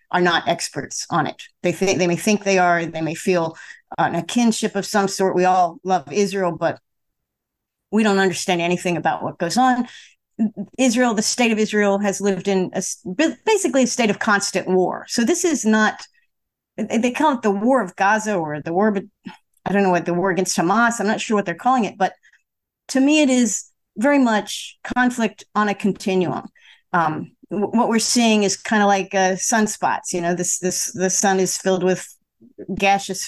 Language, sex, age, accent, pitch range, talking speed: English, female, 40-59, American, 180-225 Hz, 200 wpm